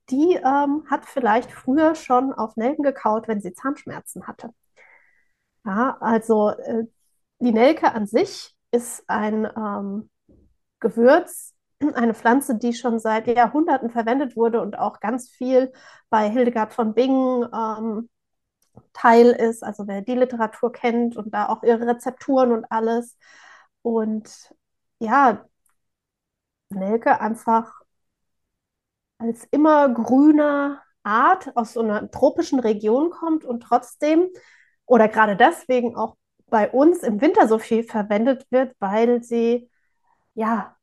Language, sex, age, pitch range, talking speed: German, female, 30-49, 220-265 Hz, 125 wpm